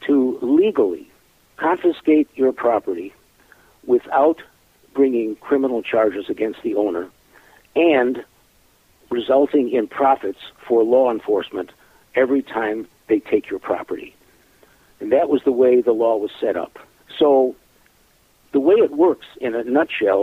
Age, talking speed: 60-79, 130 wpm